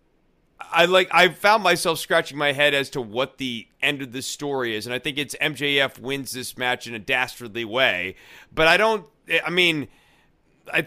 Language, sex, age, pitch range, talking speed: English, male, 30-49, 130-165 Hz, 195 wpm